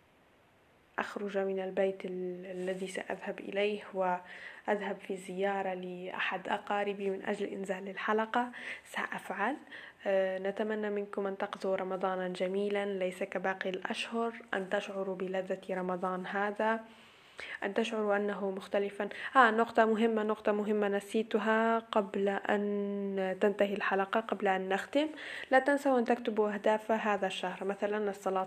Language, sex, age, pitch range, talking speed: Arabic, female, 10-29, 190-210 Hz, 120 wpm